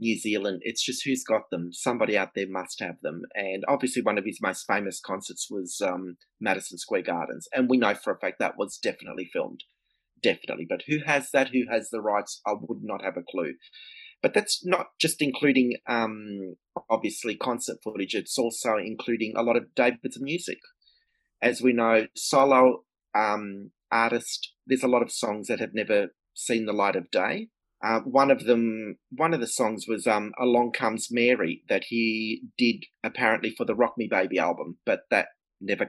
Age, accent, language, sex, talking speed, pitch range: 30-49, Australian, English, male, 185 wpm, 105-130 Hz